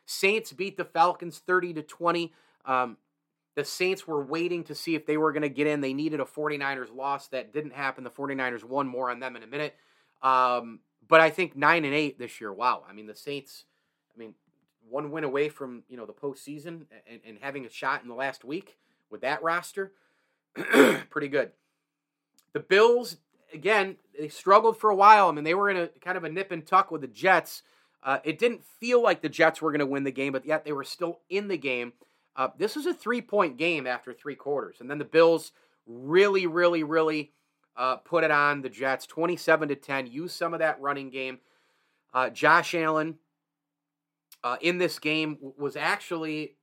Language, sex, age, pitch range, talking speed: English, male, 30-49, 135-170 Hz, 200 wpm